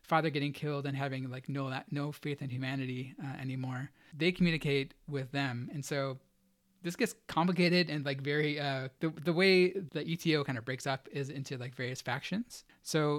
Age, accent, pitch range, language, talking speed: 30-49, American, 135-150 Hz, English, 190 wpm